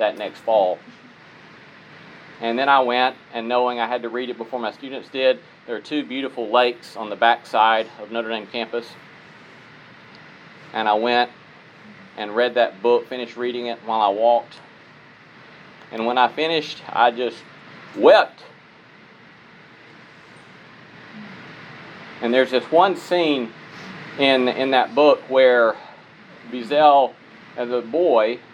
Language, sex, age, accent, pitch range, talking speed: English, male, 40-59, American, 115-130 Hz, 135 wpm